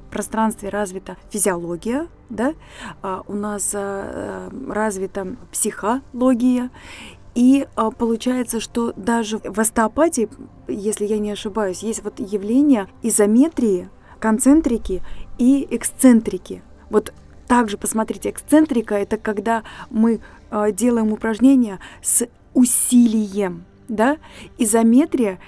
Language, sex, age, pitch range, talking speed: Russian, female, 20-39, 210-245 Hz, 95 wpm